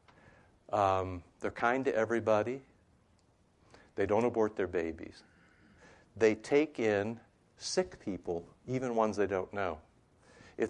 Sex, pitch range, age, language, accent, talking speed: male, 105-130 Hz, 60-79, English, American, 120 wpm